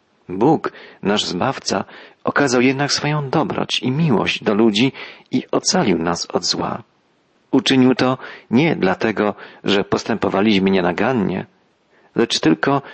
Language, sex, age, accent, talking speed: Polish, male, 40-59, native, 115 wpm